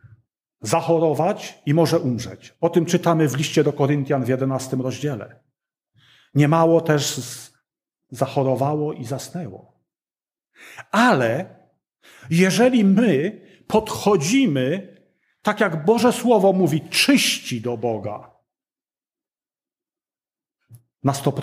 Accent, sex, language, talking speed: native, male, Polish, 90 wpm